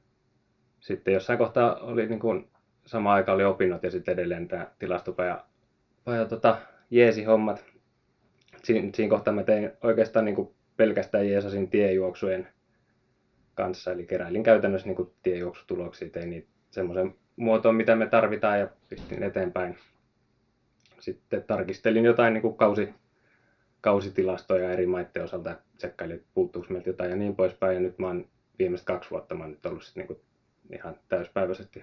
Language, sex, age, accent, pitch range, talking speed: Finnish, male, 20-39, native, 90-115 Hz, 145 wpm